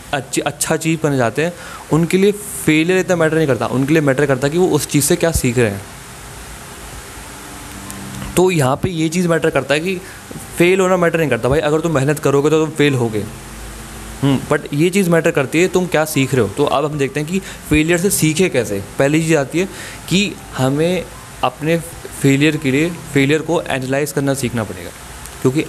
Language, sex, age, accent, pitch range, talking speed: Hindi, male, 20-39, native, 130-165 Hz, 210 wpm